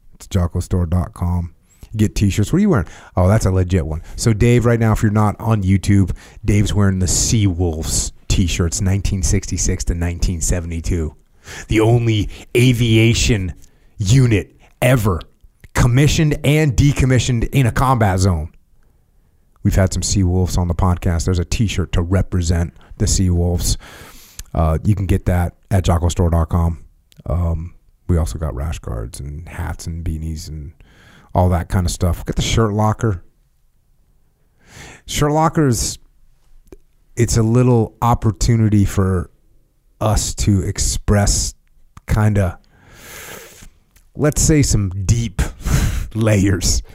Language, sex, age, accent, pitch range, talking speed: English, male, 30-49, American, 85-110 Hz, 130 wpm